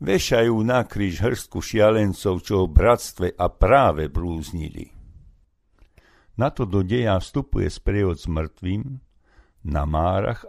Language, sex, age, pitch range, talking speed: Slovak, male, 50-69, 80-110 Hz, 115 wpm